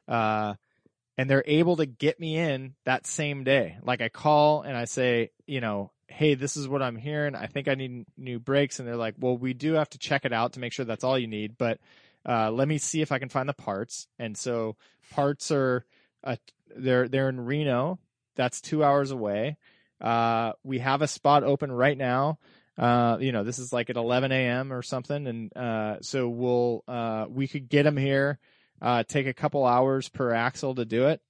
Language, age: English, 20-39